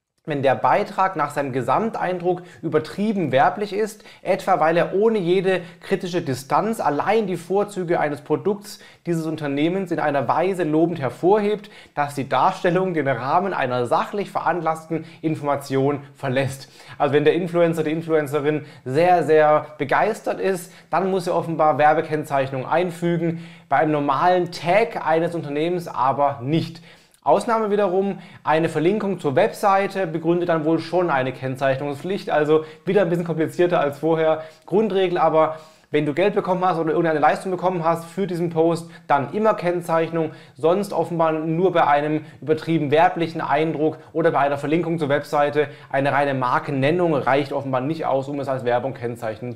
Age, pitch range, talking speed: 30-49, 145-180 Hz, 150 wpm